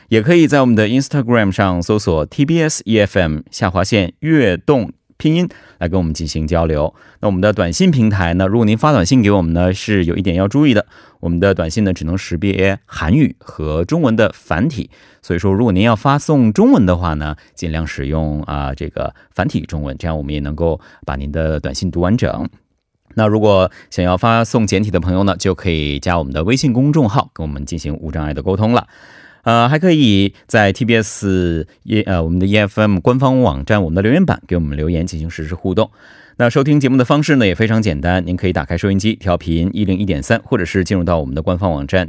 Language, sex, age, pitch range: Korean, male, 30-49, 85-115 Hz